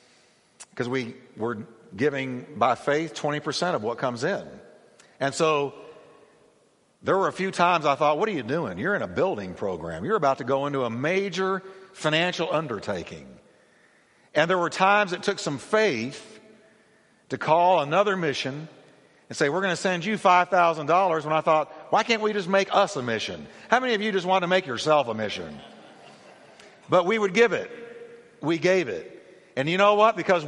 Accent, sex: American, male